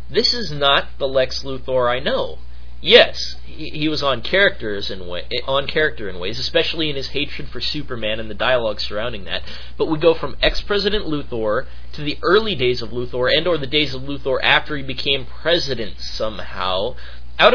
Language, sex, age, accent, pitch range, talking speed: English, male, 30-49, American, 115-180 Hz, 190 wpm